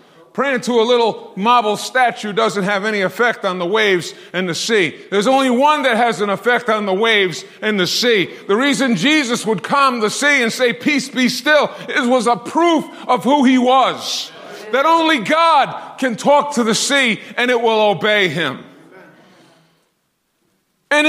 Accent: American